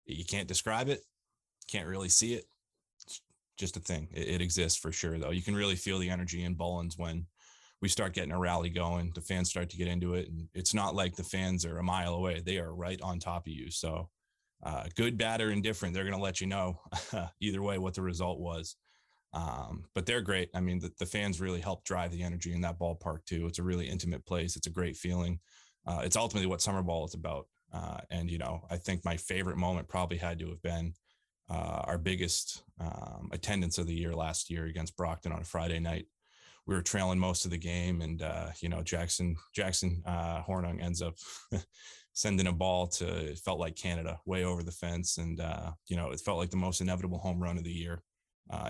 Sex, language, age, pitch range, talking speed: male, English, 20-39, 85-95 Hz, 230 wpm